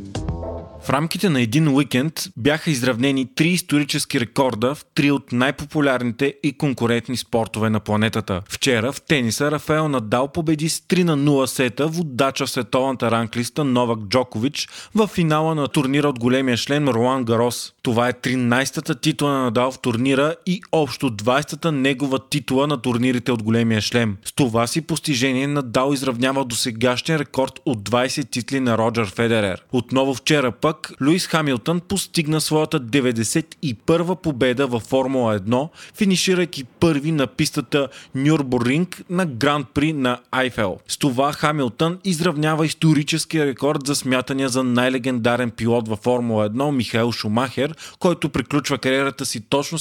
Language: Bulgarian